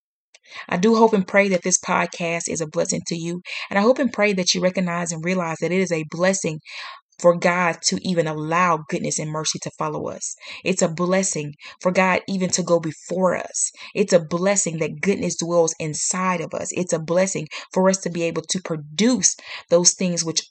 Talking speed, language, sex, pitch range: 210 wpm, English, female, 170-195 Hz